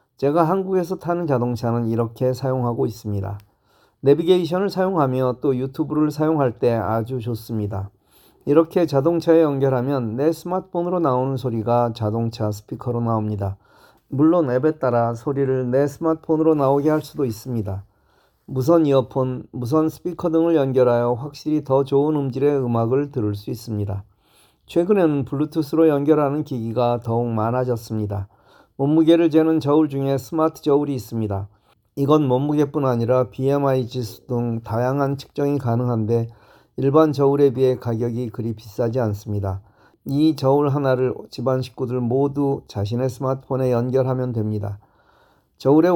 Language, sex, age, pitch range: Korean, male, 40-59, 115-150 Hz